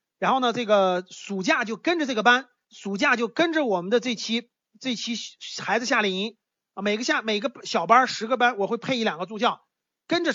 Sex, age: male, 30-49